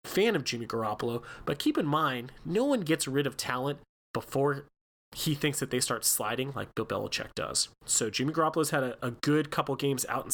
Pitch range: 120-150 Hz